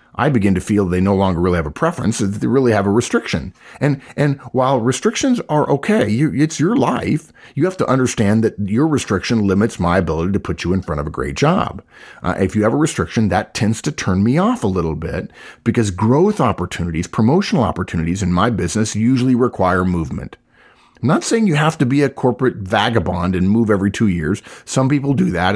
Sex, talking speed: male, 210 wpm